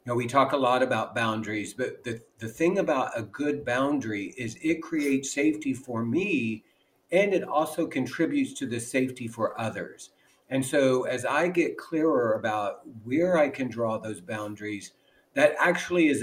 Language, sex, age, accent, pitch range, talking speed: English, male, 50-69, American, 120-155 Hz, 175 wpm